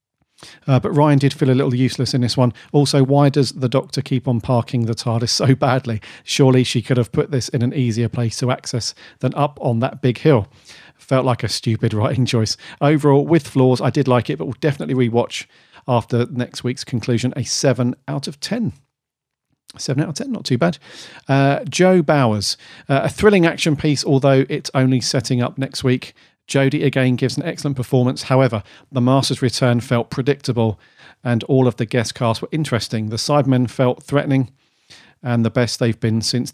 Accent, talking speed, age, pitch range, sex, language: British, 195 wpm, 40-59, 120-145 Hz, male, English